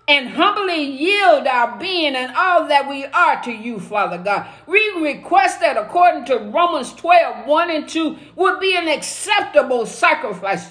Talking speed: 170 wpm